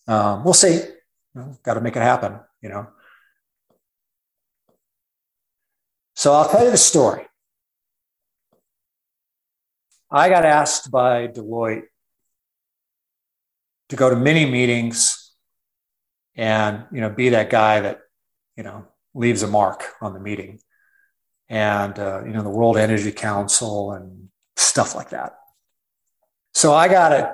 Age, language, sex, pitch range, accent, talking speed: 50-69, English, male, 105-130 Hz, American, 125 wpm